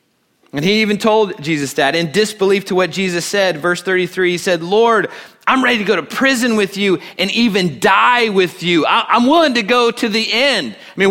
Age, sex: 30-49, male